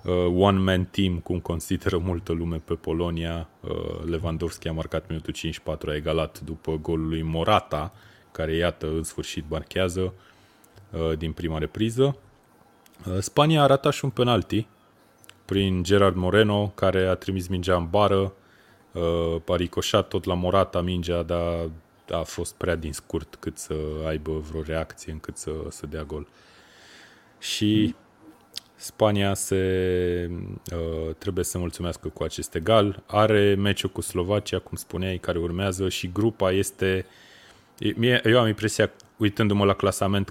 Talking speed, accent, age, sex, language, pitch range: 135 wpm, native, 20-39, male, Romanian, 80-100 Hz